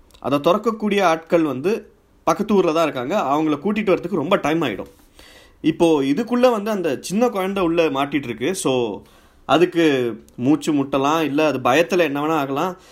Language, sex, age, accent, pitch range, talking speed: Tamil, male, 30-49, native, 120-185 Hz, 150 wpm